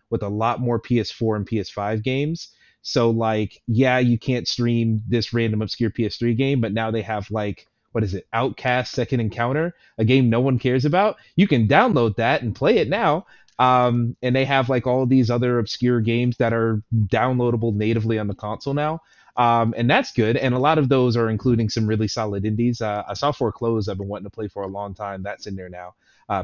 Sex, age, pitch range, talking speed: male, 30-49, 110-135 Hz, 215 wpm